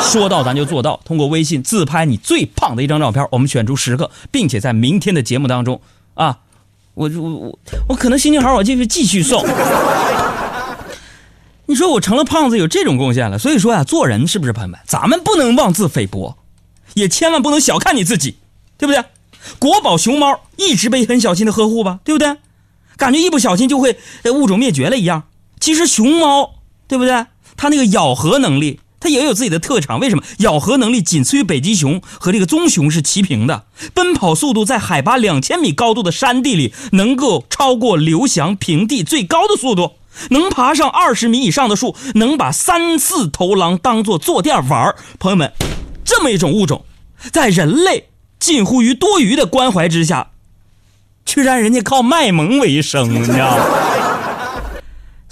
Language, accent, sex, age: Chinese, native, male, 30-49